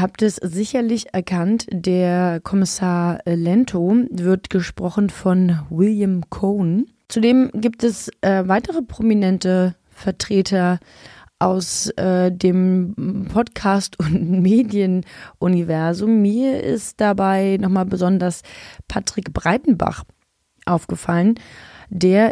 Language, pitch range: German, 180-215 Hz